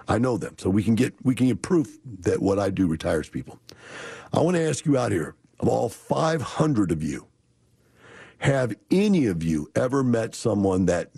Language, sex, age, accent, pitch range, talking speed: English, male, 50-69, American, 100-130 Hz, 200 wpm